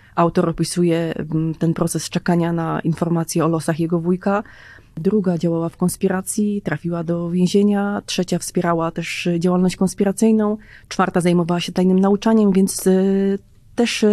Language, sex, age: Polish, female, 30-49